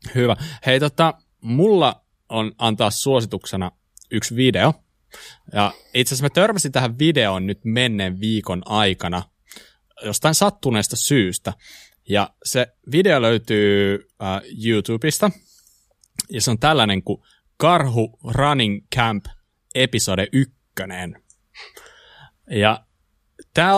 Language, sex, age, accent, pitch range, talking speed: Finnish, male, 20-39, native, 100-135 Hz, 100 wpm